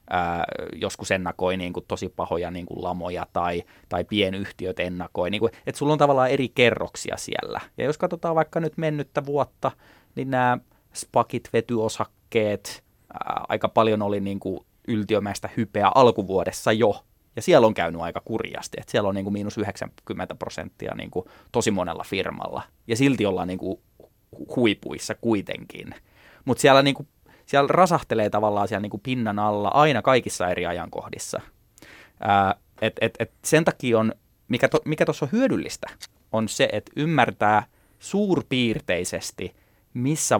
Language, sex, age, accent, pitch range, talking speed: Finnish, male, 20-39, native, 100-135 Hz, 150 wpm